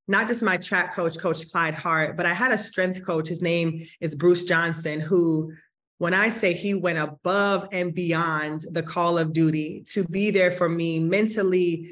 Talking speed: 190 wpm